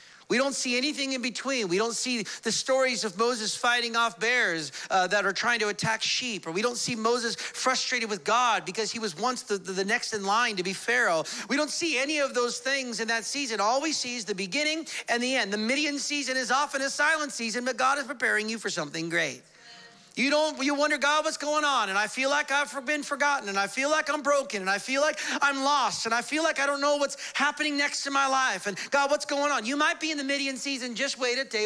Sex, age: male, 40-59